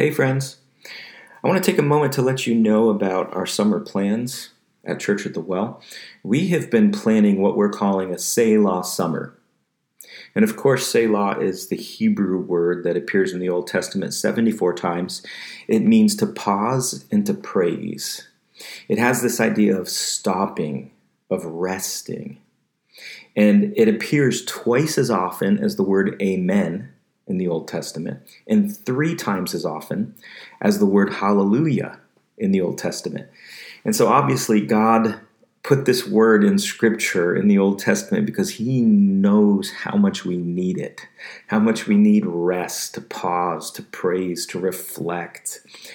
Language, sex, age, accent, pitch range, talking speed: English, male, 40-59, American, 95-135 Hz, 160 wpm